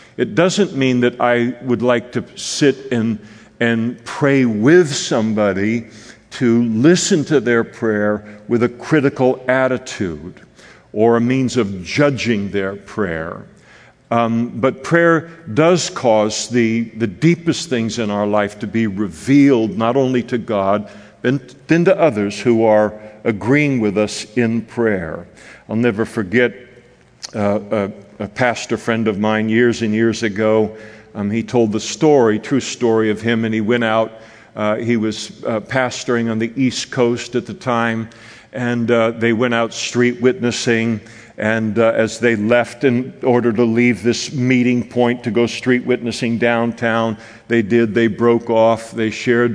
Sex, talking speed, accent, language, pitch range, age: male, 155 wpm, American, English, 110-125 Hz, 60-79